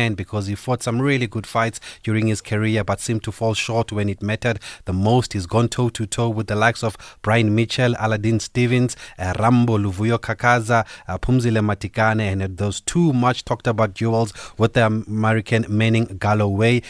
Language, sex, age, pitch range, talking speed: English, male, 30-49, 105-115 Hz, 175 wpm